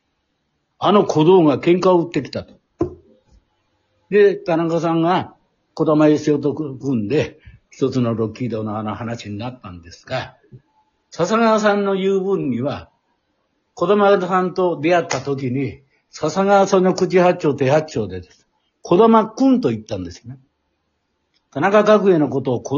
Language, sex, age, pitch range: Japanese, male, 60-79, 125-200 Hz